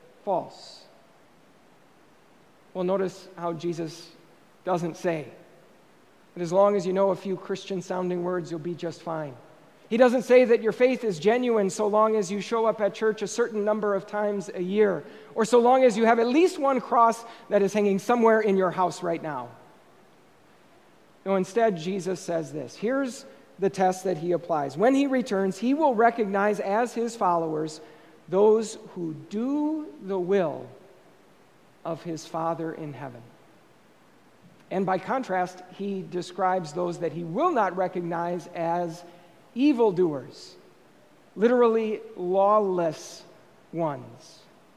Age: 40-59